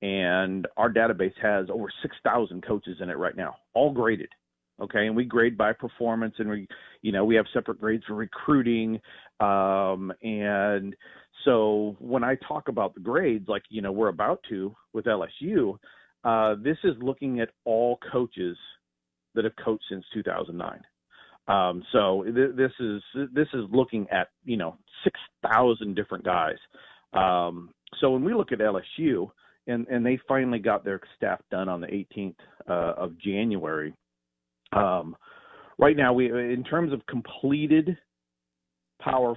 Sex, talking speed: male, 155 wpm